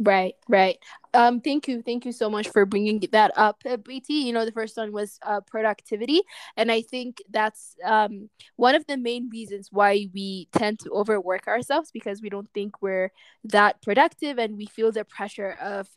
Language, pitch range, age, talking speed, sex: English, 200-240 Hz, 10-29, 195 wpm, female